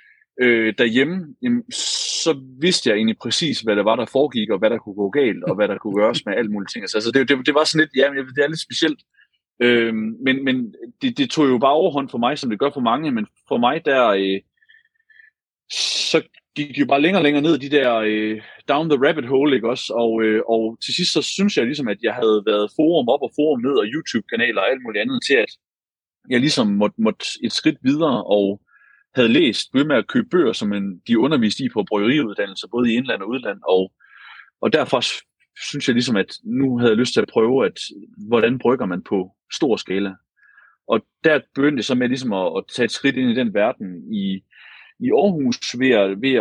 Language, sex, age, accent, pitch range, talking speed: Danish, male, 30-49, native, 110-180 Hz, 220 wpm